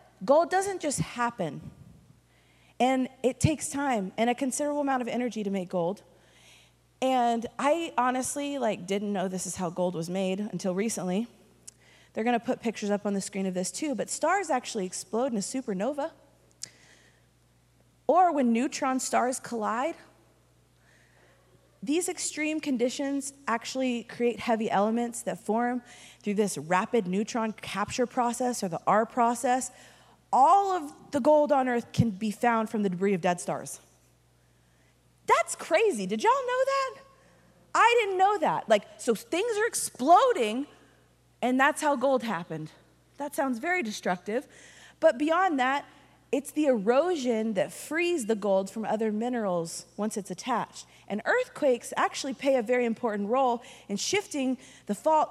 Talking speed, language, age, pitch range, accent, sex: 150 wpm, English, 20-39, 195-275 Hz, American, female